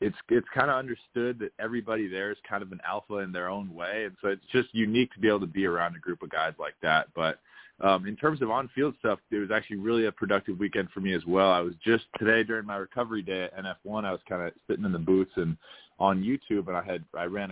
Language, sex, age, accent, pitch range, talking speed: English, male, 20-39, American, 90-105 Hz, 270 wpm